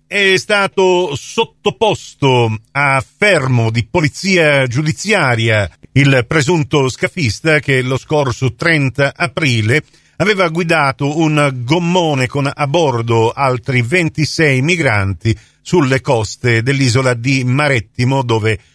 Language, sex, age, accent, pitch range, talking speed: Italian, male, 50-69, native, 115-150 Hz, 100 wpm